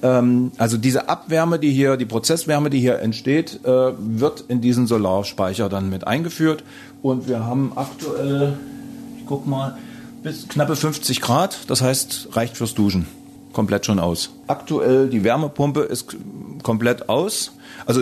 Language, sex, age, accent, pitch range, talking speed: German, male, 40-59, German, 115-135 Hz, 145 wpm